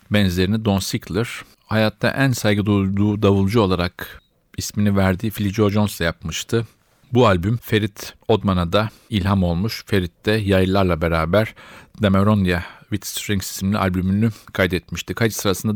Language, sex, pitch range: Turkish, male, 95-110 Hz